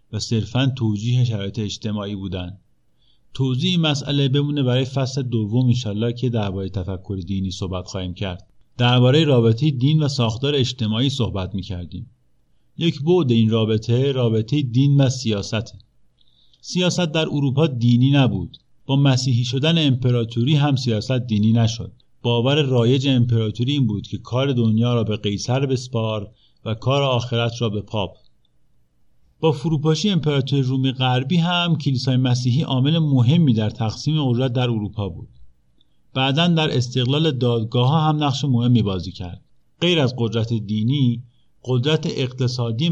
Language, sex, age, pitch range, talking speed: Persian, male, 50-69, 110-135 Hz, 140 wpm